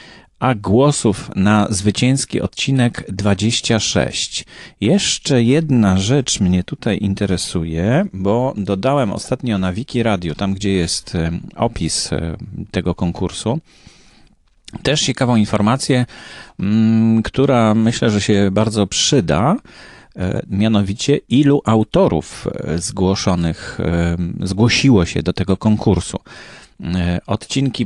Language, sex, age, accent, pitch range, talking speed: Polish, male, 30-49, native, 90-115 Hz, 95 wpm